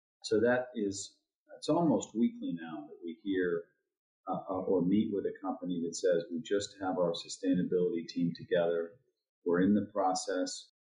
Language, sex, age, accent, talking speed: English, male, 40-59, American, 160 wpm